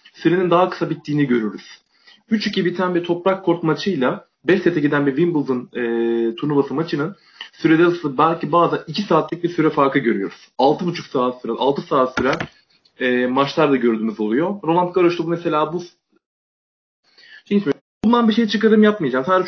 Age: 30-49